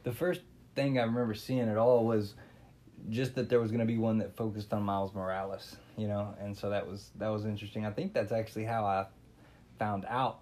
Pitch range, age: 100-120 Hz, 20-39